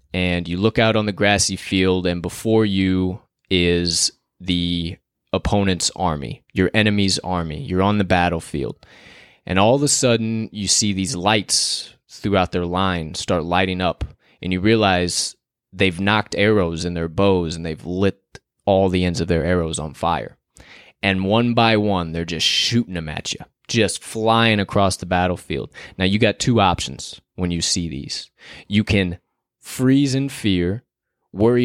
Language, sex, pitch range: English, male, 90-115 Hz